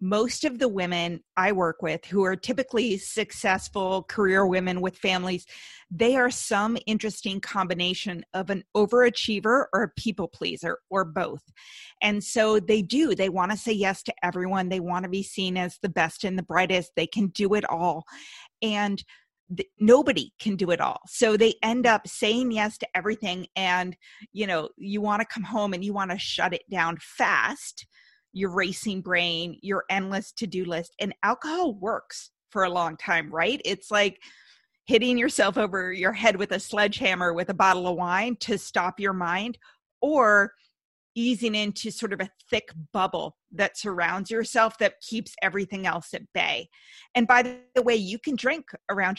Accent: American